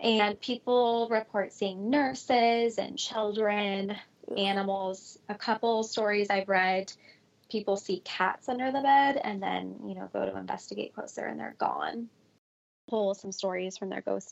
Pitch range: 195-225 Hz